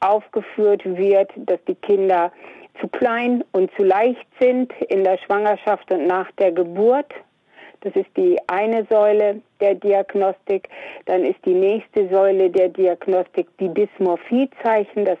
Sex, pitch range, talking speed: female, 180-220 Hz, 140 wpm